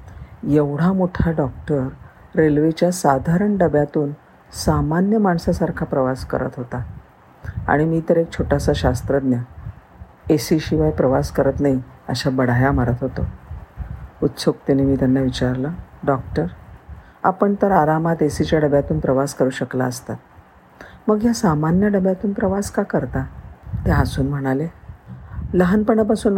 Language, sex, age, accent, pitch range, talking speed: Marathi, female, 50-69, native, 130-170 Hz, 115 wpm